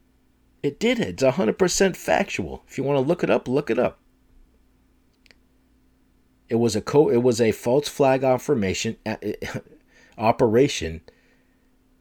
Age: 40-59